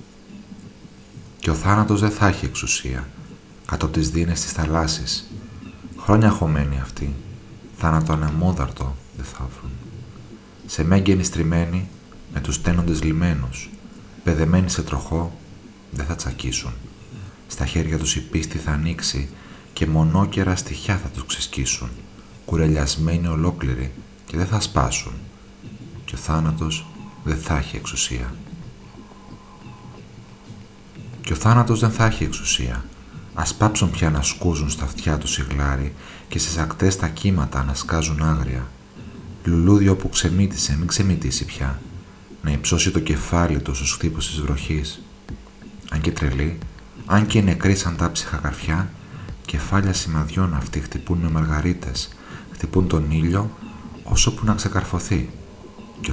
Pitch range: 75-95 Hz